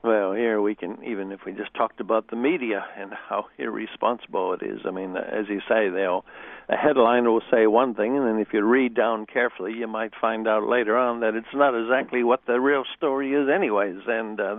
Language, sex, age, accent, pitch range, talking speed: English, male, 60-79, American, 110-125 Hz, 220 wpm